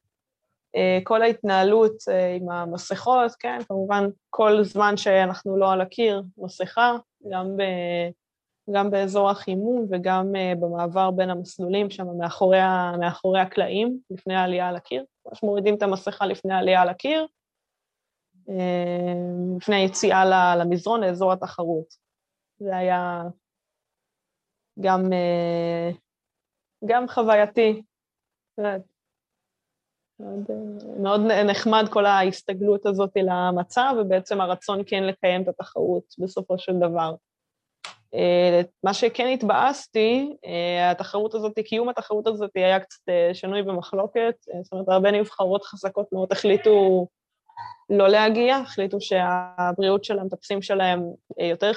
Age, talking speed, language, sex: 20-39, 105 wpm, Hebrew, female